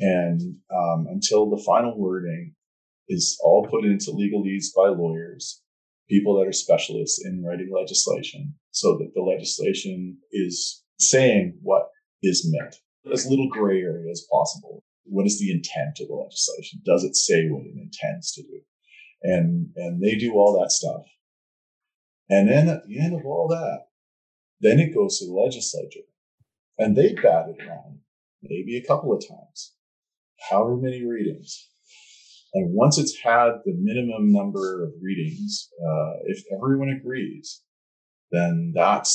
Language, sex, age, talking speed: English, male, 40-59, 155 wpm